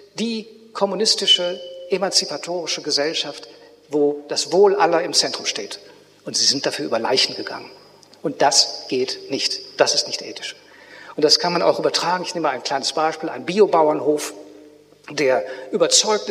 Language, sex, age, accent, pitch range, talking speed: German, male, 50-69, German, 155-225 Hz, 155 wpm